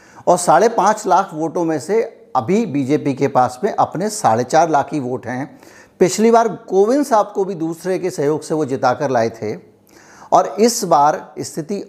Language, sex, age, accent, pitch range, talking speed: Hindi, male, 60-79, native, 140-190 Hz, 185 wpm